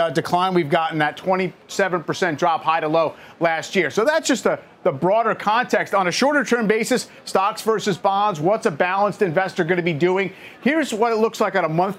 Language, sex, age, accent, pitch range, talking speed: English, male, 50-69, American, 170-215 Hz, 215 wpm